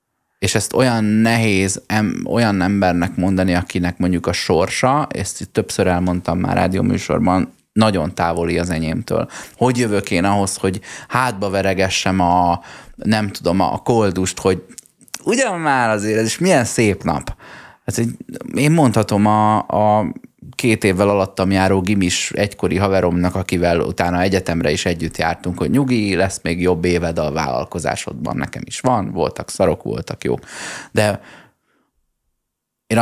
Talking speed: 140 wpm